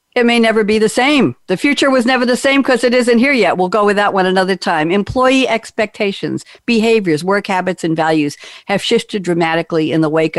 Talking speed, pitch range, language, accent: 215 wpm, 160-210 Hz, English, American